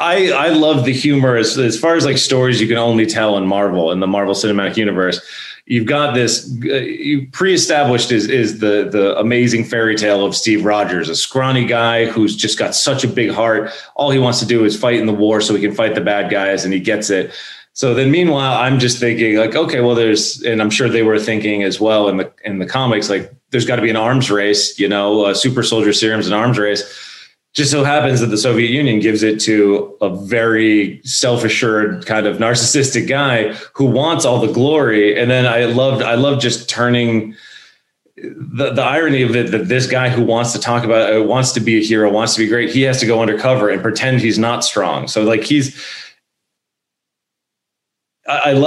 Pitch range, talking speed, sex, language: 105-130 Hz, 215 wpm, male, English